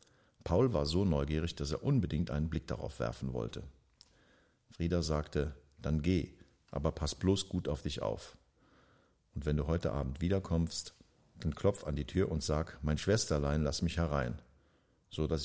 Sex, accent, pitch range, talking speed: male, German, 75-85 Hz, 165 wpm